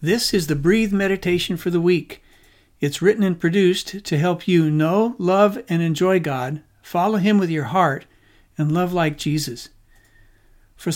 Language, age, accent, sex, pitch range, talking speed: English, 60-79, American, male, 135-185 Hz, 165 wpm